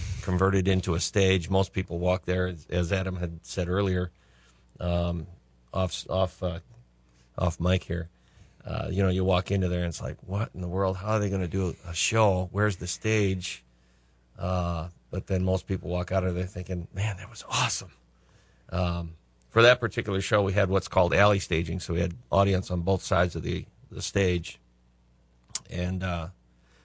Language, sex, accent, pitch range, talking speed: English, male, American, 80-95 Hz, 190 wpm